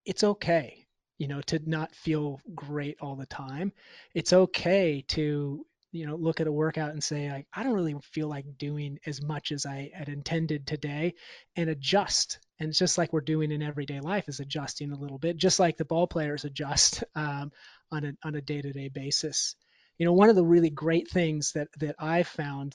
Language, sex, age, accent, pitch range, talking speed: English, male, 30-49, American, 145-170 Hz, 205 wpm